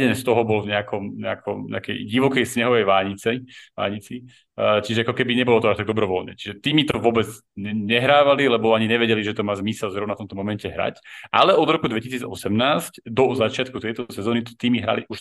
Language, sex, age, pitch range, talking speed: Slovak, male, 30-49, 105-120 Hz, 175 wpm